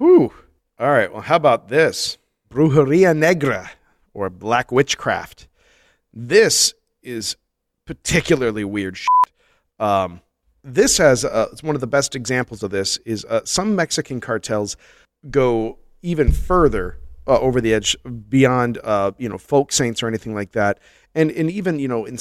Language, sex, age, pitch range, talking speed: English, male, 40-59, 100-130 Hz, 155 wpm